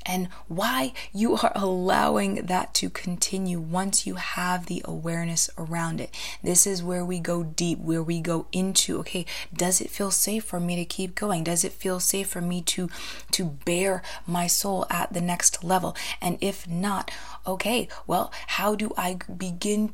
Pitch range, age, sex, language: 170-195 Hz, 20-39, female, English